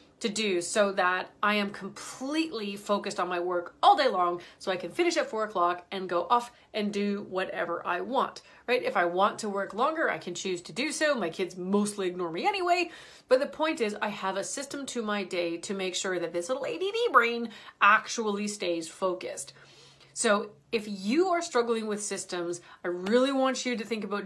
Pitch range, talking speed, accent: 185-235 Hz, 210 wpm, American